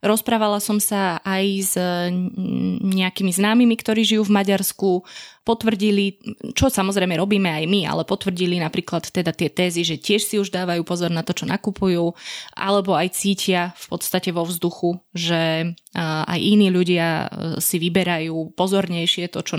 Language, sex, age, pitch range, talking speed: Slovak, female, 20-39, 175-200 Hz, 150 wpm